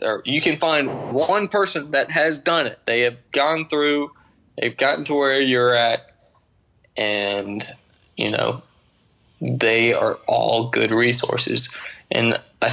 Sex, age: male, 20-39